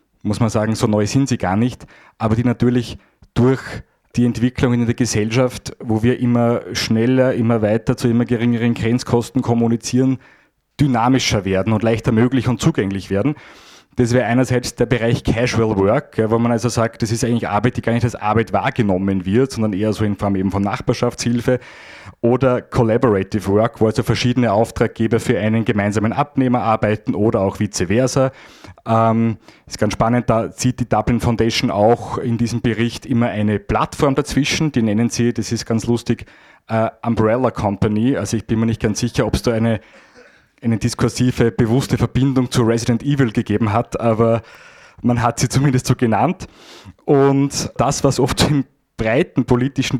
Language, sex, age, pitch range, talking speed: German, male, 30-49, 110-125 Hz, 175 wpm